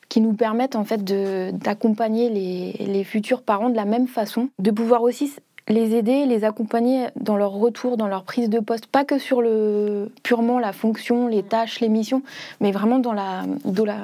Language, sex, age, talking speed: French, female, 20-39, 190 wpm